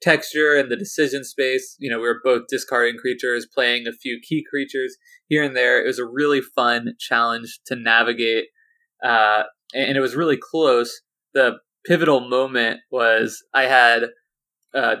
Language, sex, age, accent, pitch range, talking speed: English, male, 20-39, American, 115-150 Hz, 165 wpm